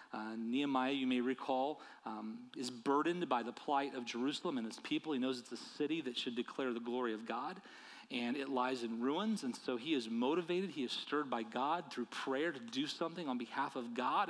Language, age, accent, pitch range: English, 40-59, American, 135-195 Hz